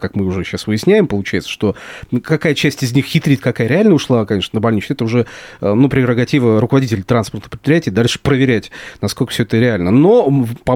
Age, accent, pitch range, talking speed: 30-49, native, 110-140 Hz, 185 wpm